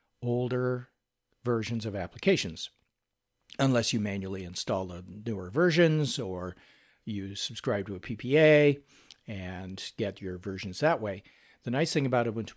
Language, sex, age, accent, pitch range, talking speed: English, male, 50-69, American, 100-140 Hz, 135 wpm